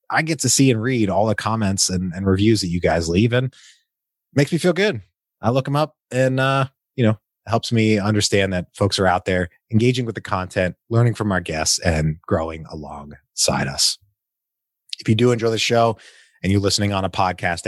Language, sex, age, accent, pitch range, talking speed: English, male, 30-49, American, 90-120 Hz, 215 wpm